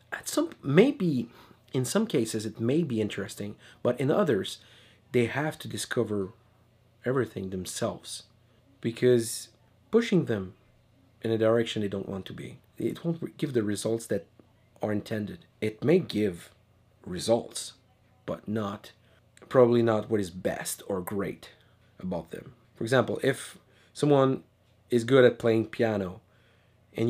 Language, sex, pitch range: English, male, 105-125 Hz